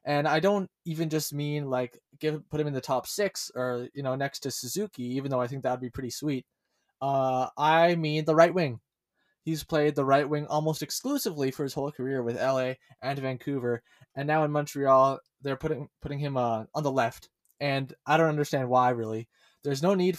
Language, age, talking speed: English, 20-39, 210 wpm